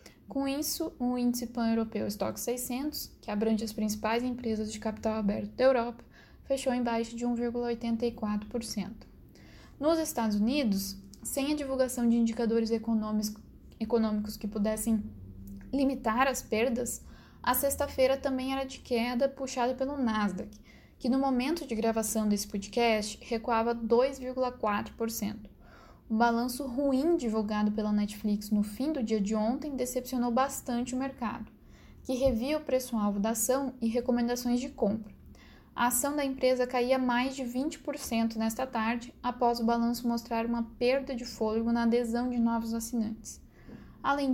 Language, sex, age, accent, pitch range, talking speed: Portuguese, female, 10-29, Brazilian, 225-255 Hz, 140 wpm